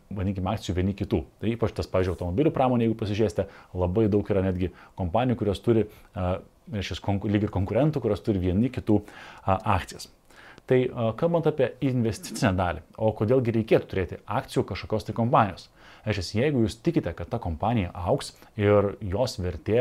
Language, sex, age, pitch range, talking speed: English, male, 30-49, 95-120 Hz, 145 wpm